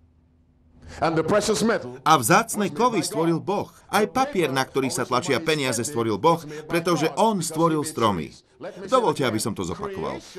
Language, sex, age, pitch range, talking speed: Slovak, male, 40-59, 140-205 Hz, 135 wpm